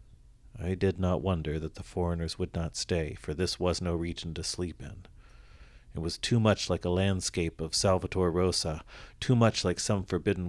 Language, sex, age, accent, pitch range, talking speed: English, male, 50-69, American, 85-100 Hz, 190 wpm